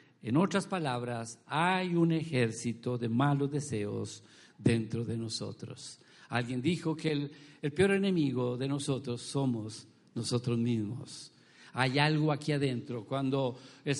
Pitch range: 140-175 Hz